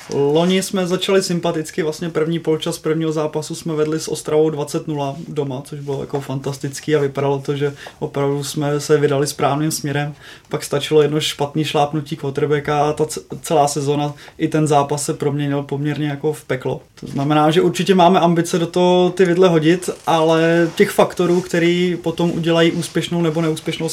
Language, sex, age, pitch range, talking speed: Czech, male, 20-39, 150-160 Hz, 170 wpm